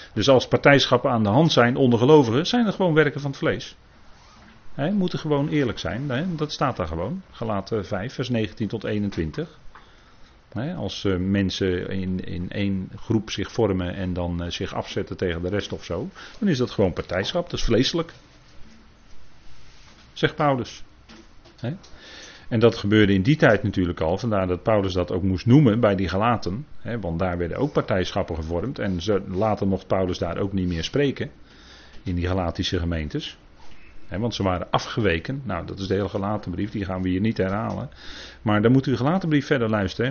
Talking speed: 185 wpm